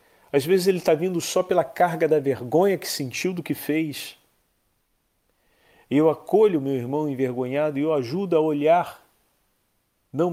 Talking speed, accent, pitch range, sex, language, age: 150 wpm, Brazilian, 120-150 Hz, male, Portuguese, 40-59